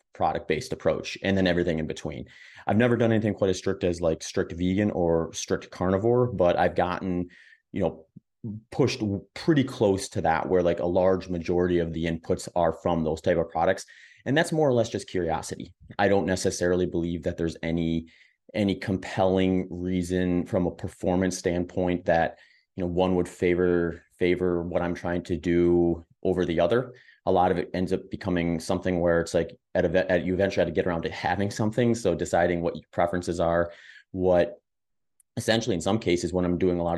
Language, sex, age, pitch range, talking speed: English, male, 30-49, 85-100 Hz, 195 wpm